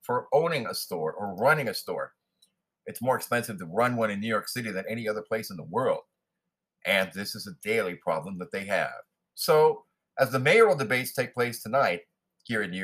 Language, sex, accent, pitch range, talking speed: English, male, American, 110-145 Hz, 210 wpm